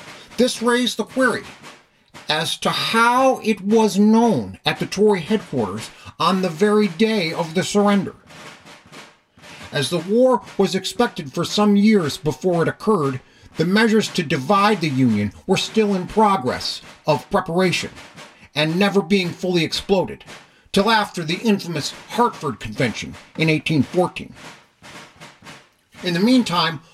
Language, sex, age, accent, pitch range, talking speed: English, male, 50-69, American, 160-215 Hz, 135 wpm